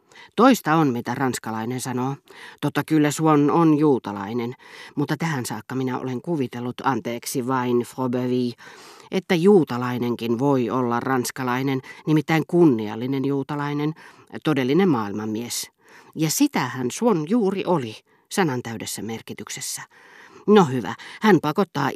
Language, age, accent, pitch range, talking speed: Finnish, 40-59, native, 120-160 Hz, 110 wpm